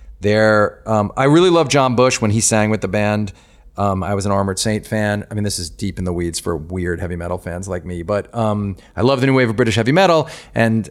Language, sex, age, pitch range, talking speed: English, male, 40-59, 95-125 Hz, 260 wpm